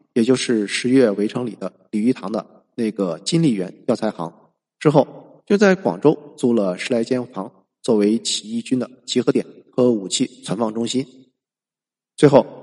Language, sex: Chinese, male